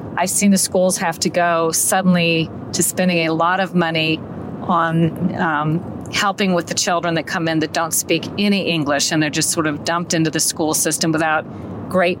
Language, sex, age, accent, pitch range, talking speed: English, female, 40-59, American, 160-180 Hz, 195 wpm